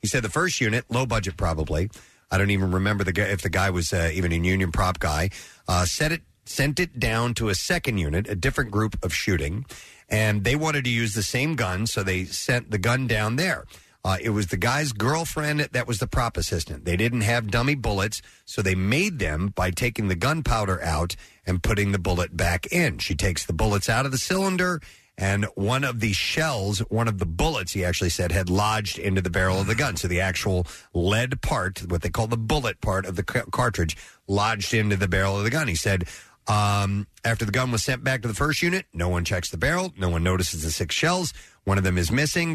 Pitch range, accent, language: 95-120 Hz, American, English